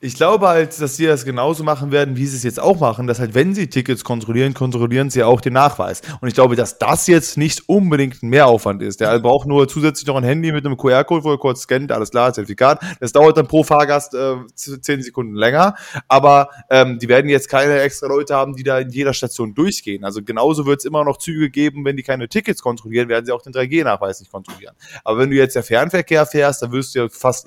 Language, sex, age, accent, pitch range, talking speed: German, male, 20-39, German, 120-145 Hz, 240 wpm